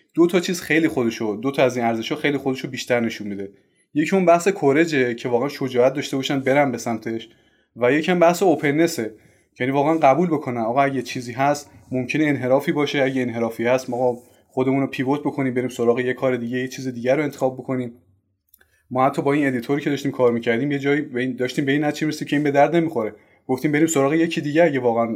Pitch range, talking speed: 120-150 Hz, 200 wpm